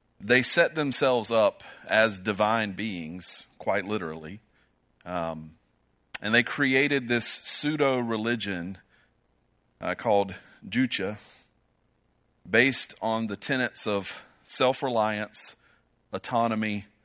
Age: 40-59